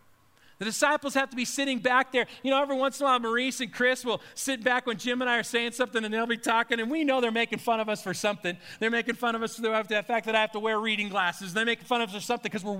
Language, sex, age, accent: English, male, 40-59, American